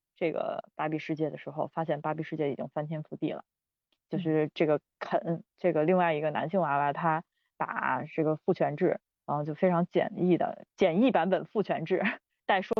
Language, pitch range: Chinese, 155-180 Hz